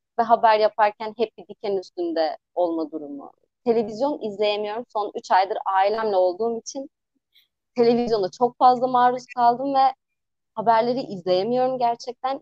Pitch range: 200-270 Hz